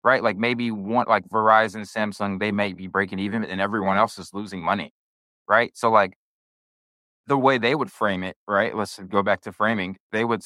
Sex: male